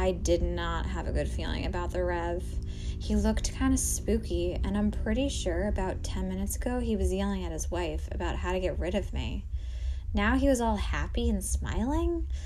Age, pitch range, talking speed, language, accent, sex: 20-39, 75-95 Hz, 205 wpm, English, American, female